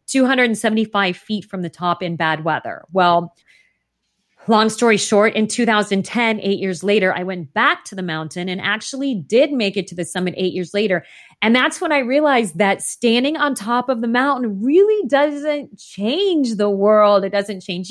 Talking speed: 180 wpm